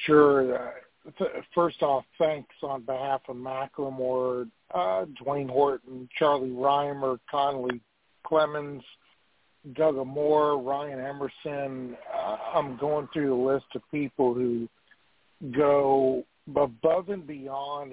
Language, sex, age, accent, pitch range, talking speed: English, male, 50-69, American, 130-150 Hz, 105 wpm